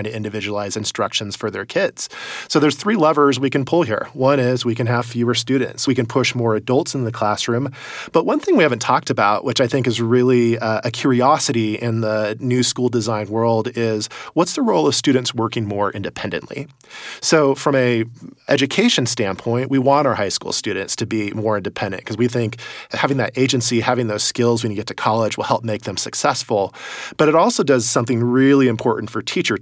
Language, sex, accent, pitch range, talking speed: English, male, American, 115-135 Hz, 205 wpm